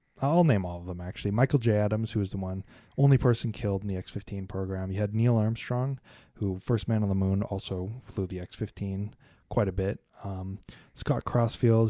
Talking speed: 210 wpm